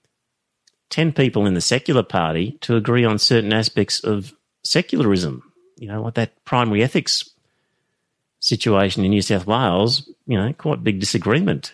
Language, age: English, 40-59